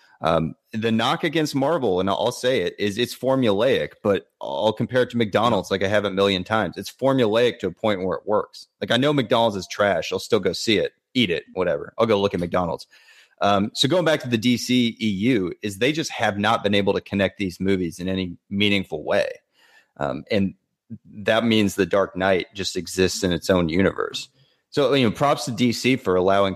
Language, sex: English, male